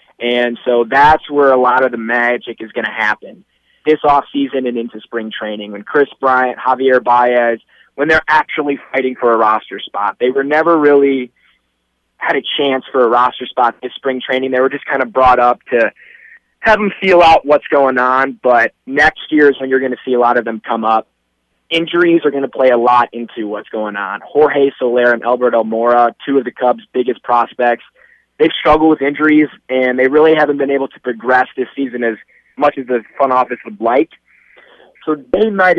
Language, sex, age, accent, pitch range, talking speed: English, male, 20-39, American, 120-145 Hz, 205 wpm